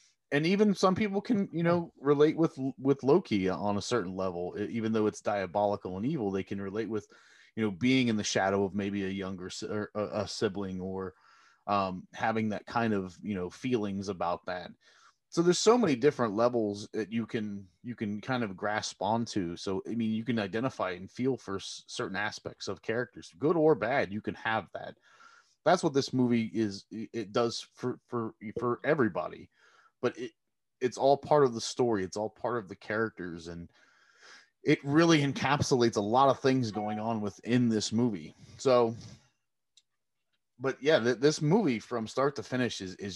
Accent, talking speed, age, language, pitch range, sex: American, 185 wpm, 30-49, English, 100-125 Hz, male